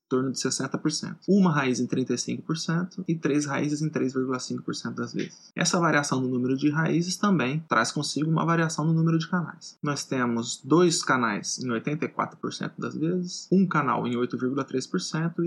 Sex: male